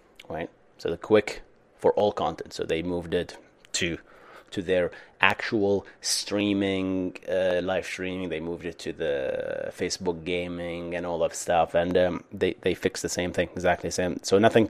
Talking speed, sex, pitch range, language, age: 175 wpm, male, 90-115 Hz, English, 30-49